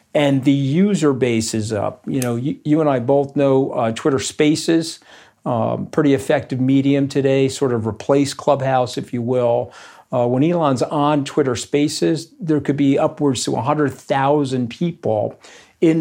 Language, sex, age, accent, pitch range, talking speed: English, male, 50-69, American, 125-145 Hz, 160 wpm